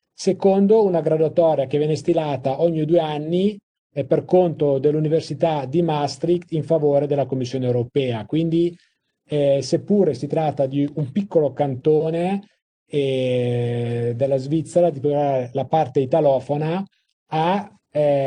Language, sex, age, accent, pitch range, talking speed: Italian, male, 40-59, native, 140-170 Hz, 120 wpm